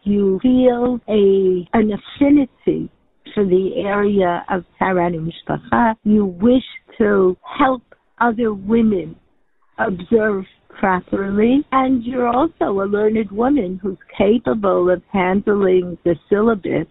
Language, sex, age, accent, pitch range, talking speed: English, female, 60-79, American, 170-210 Hz, 105 wpm